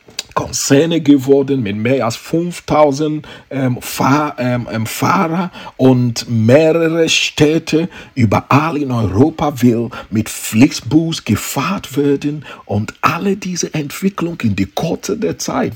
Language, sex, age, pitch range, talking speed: English, male, 50-69, 115-165 Hz, 110 wpm